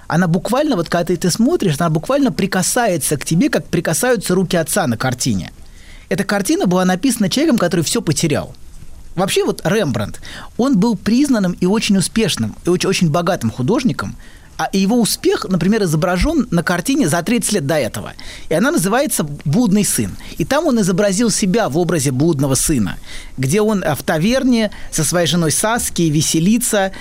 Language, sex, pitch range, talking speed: Russian, male, 150-215 Hz, 165 wpm